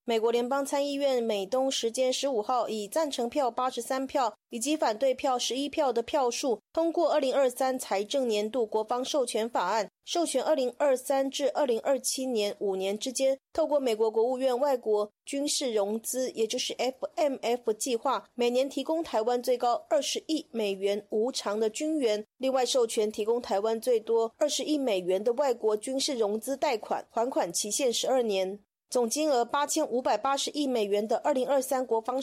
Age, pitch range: 30-49, 225-280 Hz